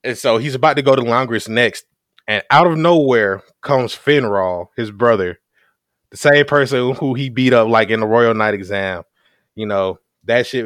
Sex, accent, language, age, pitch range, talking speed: male, American, English, 20-39, 105-125 Hz, 190 wpm